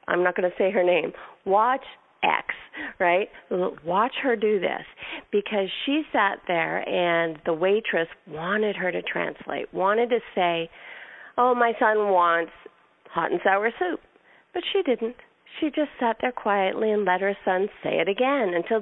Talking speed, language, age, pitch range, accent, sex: 165 wpm, English, 40-59, 180-250 Hz, American, female